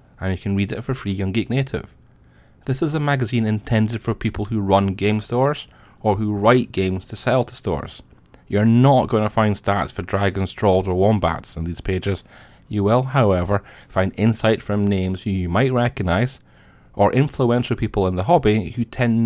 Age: 30-49